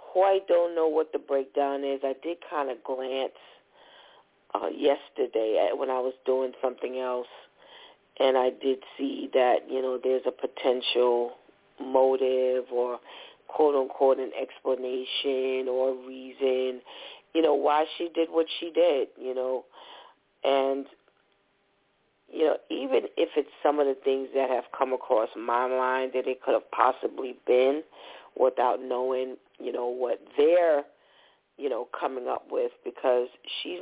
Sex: female